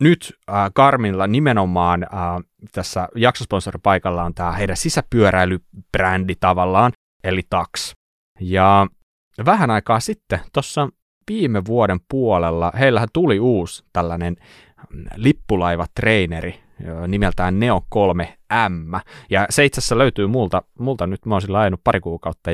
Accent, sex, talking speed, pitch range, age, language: native, male, 110 wpm, 90-130 Hz, 30-49, Finnish